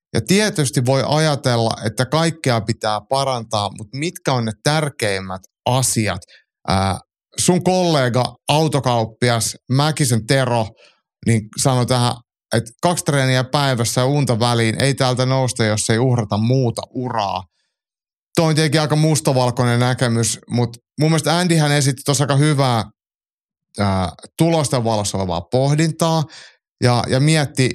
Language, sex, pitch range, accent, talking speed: Finnish, male, 115-150 Hz, native, 120 wpm